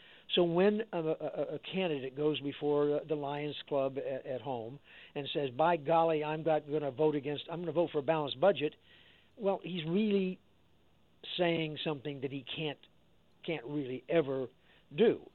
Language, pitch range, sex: English, 135-165 Hz, male